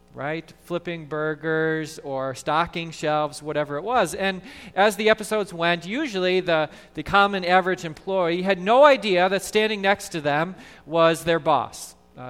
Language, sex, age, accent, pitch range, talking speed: English, male, 40-59, American, 150-200 Hz, 155 wpm